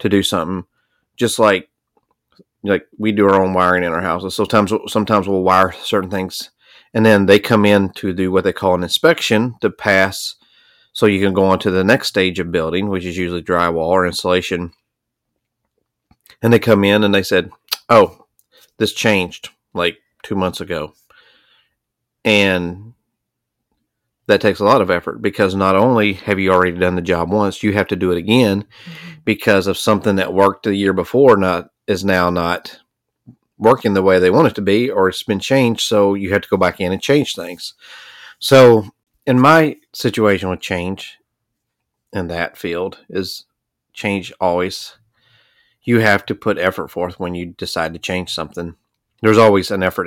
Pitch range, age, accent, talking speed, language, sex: 90-110 Hz, 30-49, American, 180 wpm, English, male